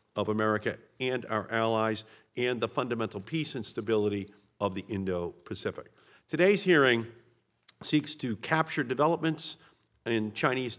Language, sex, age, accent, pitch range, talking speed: English, male, 50-69, American, 105-135 Hz, 120 wpm